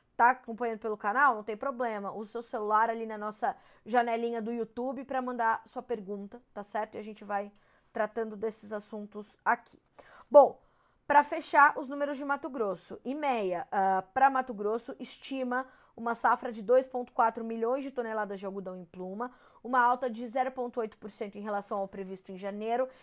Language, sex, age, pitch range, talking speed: Portuguese, female, 20-39, 205-245 Hz, 170 wpm